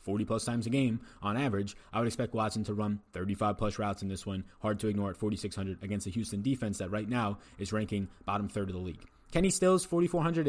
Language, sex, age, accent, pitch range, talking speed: English, male, 20-39, American, 105-140 Hz, 235 wpm